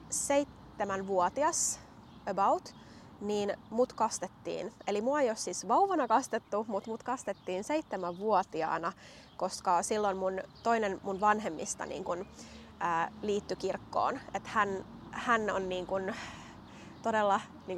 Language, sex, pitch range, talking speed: Finnish, female, 190-260 Hz, 110 wpm